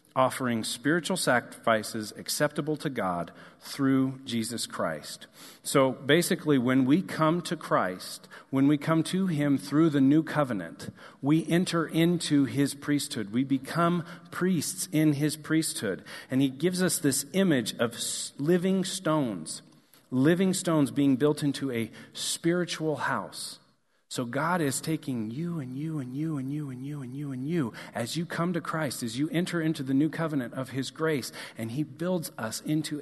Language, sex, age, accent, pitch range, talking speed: English, male, 40-59, American, 135-165 Hz, 165 wpm